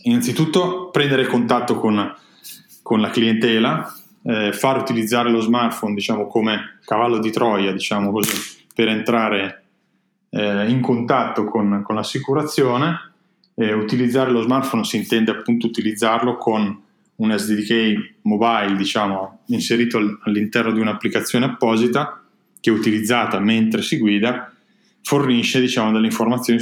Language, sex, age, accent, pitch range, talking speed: English, male, 20-39, Italian, 110-125 Hz, 125 wpm